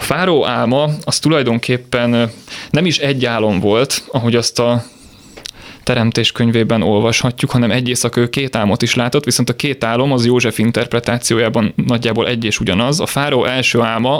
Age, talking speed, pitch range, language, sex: 30-49, 155 wpm, 115-130 Hz, Hungarian, male